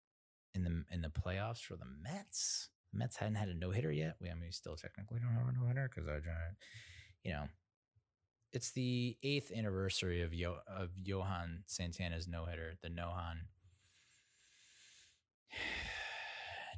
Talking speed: 155 wpm